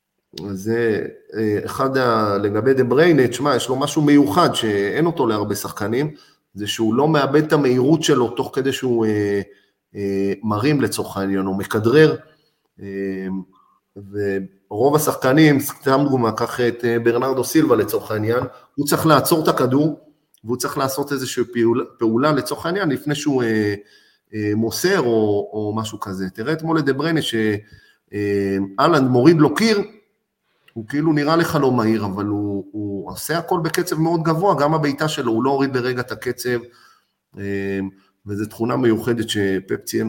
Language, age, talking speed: Hebrew, 30-49, 145 wpm